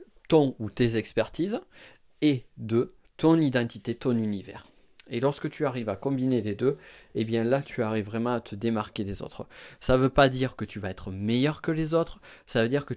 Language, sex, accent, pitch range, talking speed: French, male, French, 110-130 Hz, 210 wpm